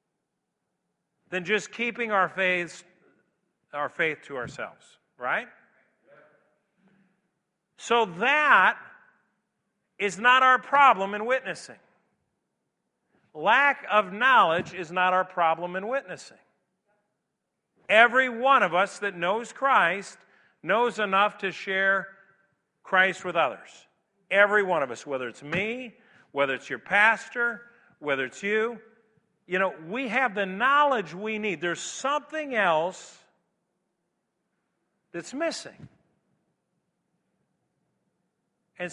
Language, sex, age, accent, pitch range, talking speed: English, male, 50-69, American, 180-235 Hz, 105 wpm